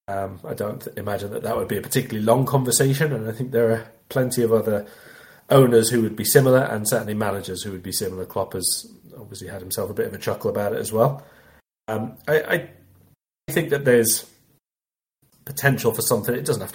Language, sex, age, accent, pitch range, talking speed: English, male, 30-49, British, 100-130 Hz, 210 wpm